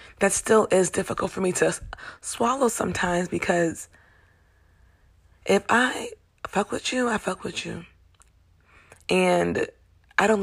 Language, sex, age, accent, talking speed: English, female, 20-39, American, 125 wpm